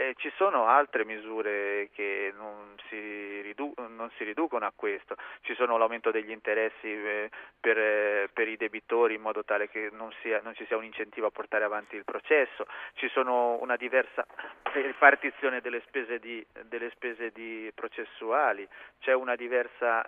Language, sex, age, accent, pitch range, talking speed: Italian, male, 30-49, native, 110-135 Hz, 160 wpm